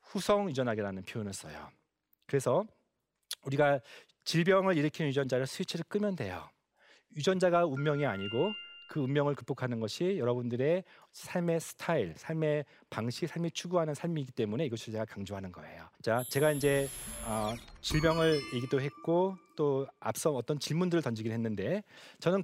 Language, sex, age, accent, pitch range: Korean, male, 40-59, native, 115-170 Hz